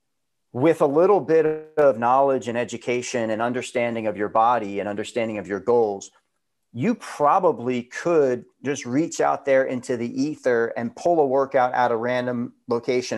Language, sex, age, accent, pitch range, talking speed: English, male, 30-49, American, 115-145 Hz, 165 wpm